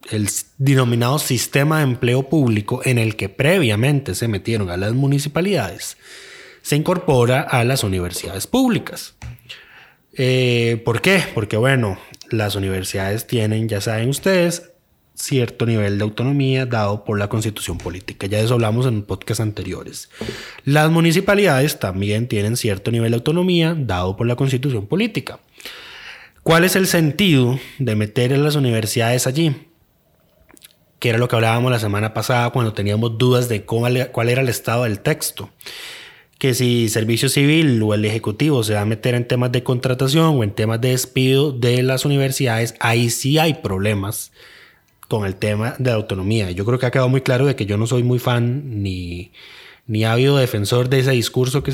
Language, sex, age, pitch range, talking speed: Spanish, male, 20-39, 110-135 Hz, 170 wpm